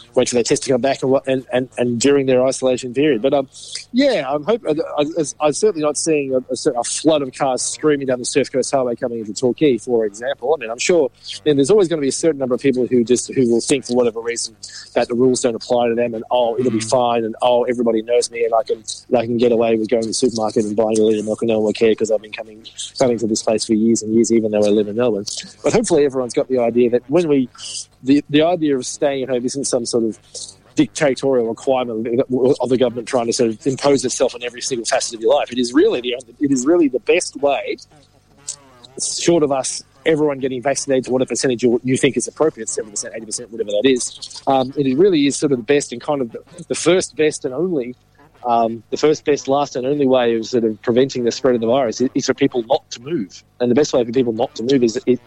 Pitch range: 115-140 Hz